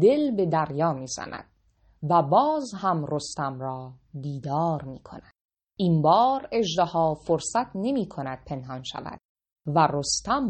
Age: 30-49